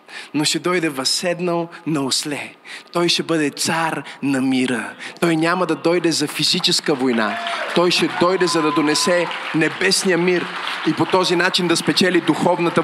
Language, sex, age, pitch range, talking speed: Bulgarian, male, 20-39, 175-270 Hz, 160 wpm